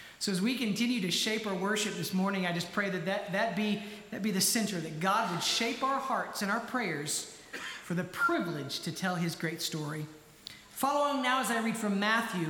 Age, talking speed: 40-59, 215 wpm